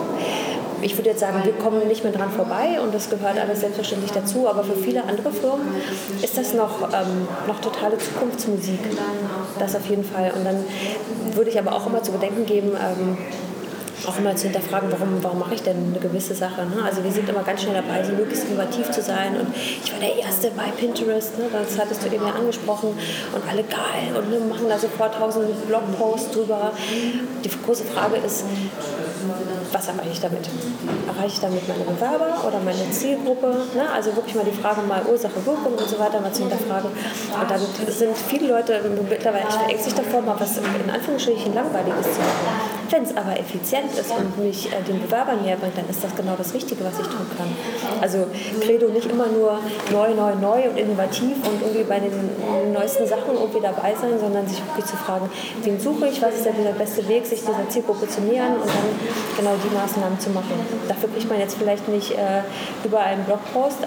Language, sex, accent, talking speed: English, female, German, 200 wpm